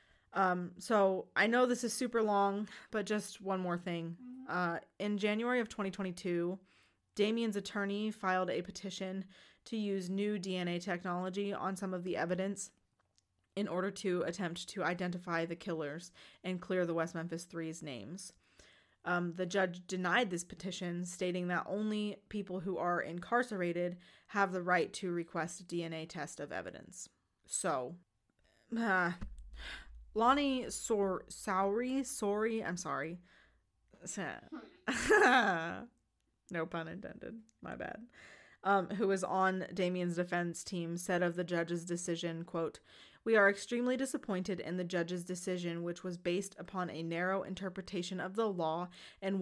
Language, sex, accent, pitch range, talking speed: English, female, American, 175-200 Hz, 140 wpm